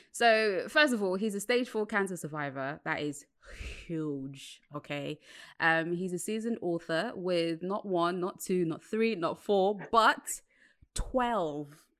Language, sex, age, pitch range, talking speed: English, female, 20-39, 165-220 Hz, 150 wpm